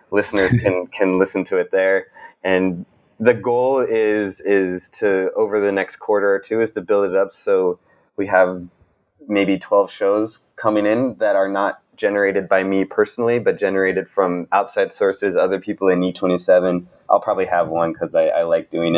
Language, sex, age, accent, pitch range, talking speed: English, male, 20-39, American, 95-120 Hz, 180 wpm